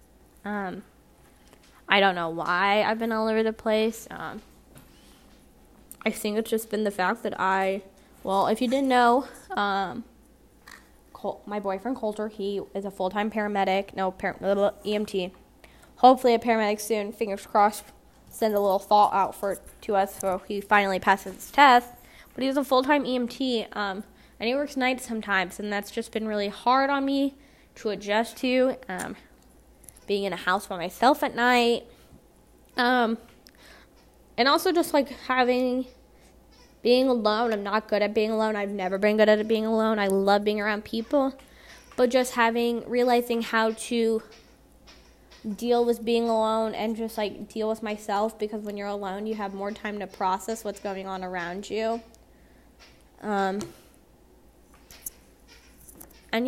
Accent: American